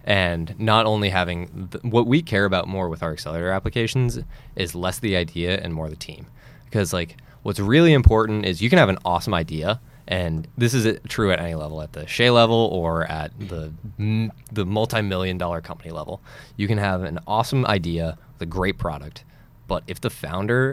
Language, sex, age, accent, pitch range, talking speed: English, male, 20-39, American, 80-110 Hz, 200 wpm